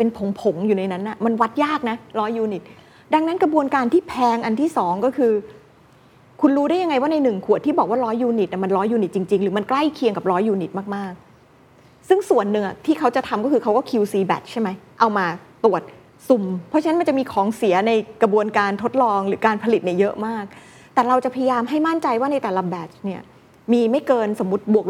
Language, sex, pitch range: Thai, female, 195-260 Hz